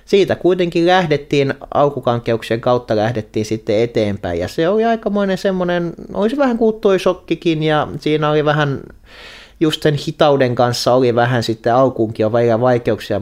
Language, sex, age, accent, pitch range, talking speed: Finnish, male, 30-49, native, 105-135 Hz, 135 wpm